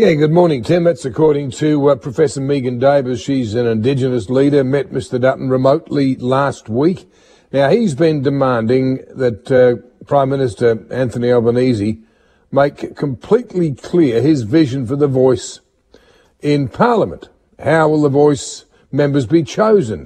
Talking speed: 145 wpm